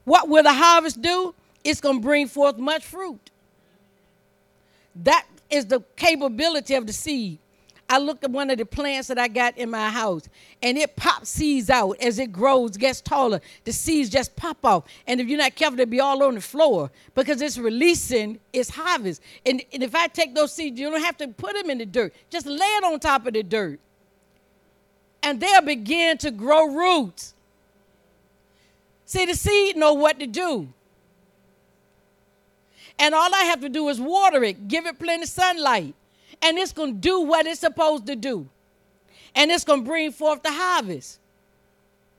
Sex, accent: female, American